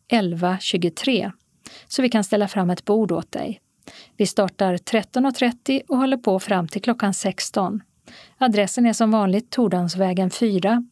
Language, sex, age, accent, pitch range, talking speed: Swedish, female, 40-59, native, 195-235 Hz, 145 wpm